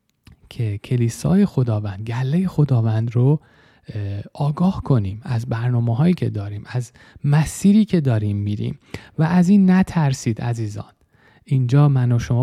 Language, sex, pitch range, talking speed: Persian, male, 110-140 Hz, 130 wpm